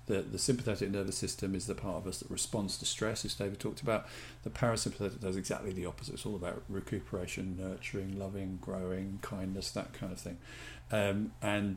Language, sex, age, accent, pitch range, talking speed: English, male, 40-59, British, 95-115 Hz, 195 wpm